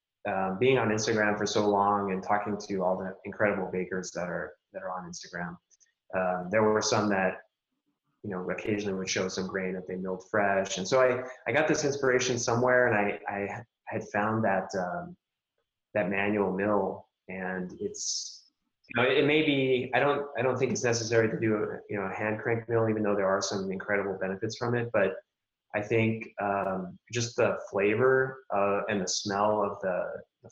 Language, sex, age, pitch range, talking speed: English, male, 20-39, 95-115 Hz, 200 wpm